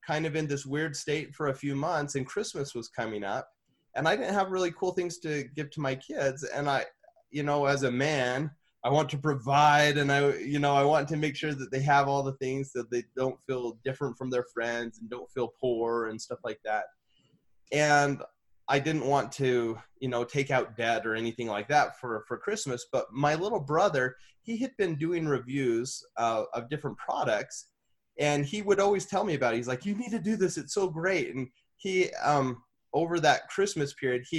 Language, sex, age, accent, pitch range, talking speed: English, male, 20-39, American, 130-160 Hz, 215 wpm